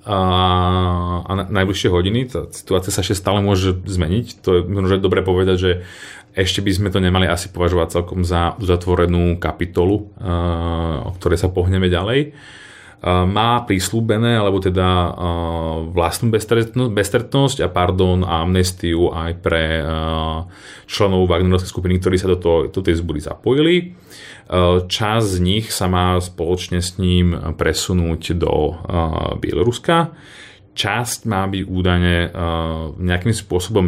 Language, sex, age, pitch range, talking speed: Slovak, male, 30-49, 85-100 Hz, 140 wpm